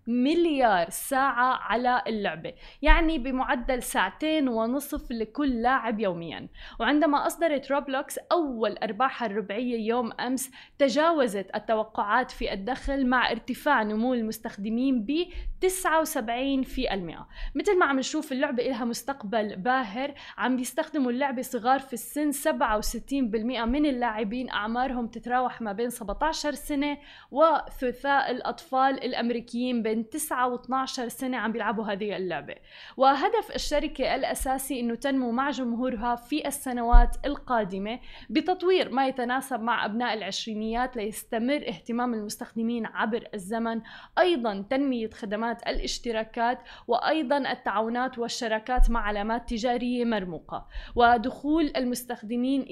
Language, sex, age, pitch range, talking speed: Arabic, female, 20-39, 230-275 Hz, 115 wpm